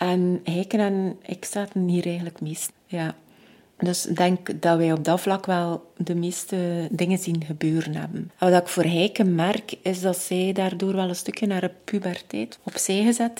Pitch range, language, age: 170-205 Hz, Dutch, 30-49